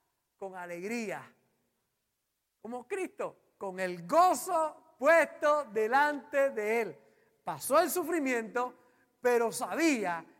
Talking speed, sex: 90 wpm, male